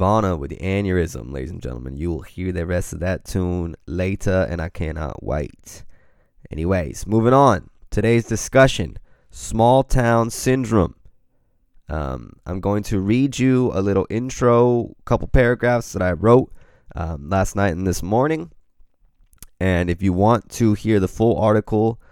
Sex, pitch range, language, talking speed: male, 85-110 Hz, English, 150 wpm